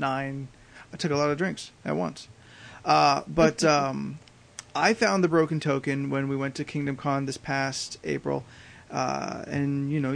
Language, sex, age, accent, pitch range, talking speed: English, male, 30-49, American, 135-165 Hz, 175 wpm